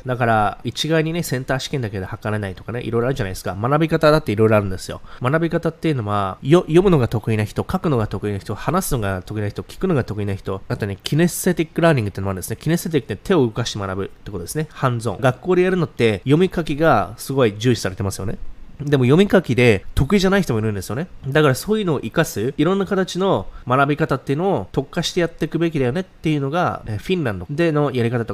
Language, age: Japanese, 20-39